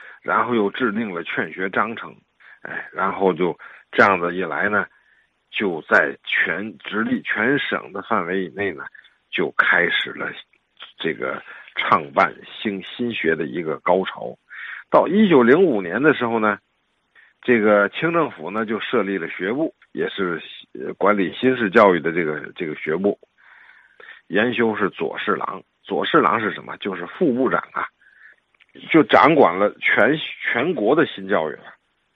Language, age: Chinese, 50-69